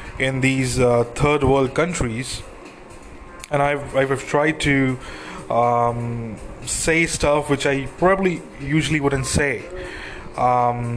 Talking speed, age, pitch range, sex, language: 115 wpm, 20-39, 120-145 Hz, male, English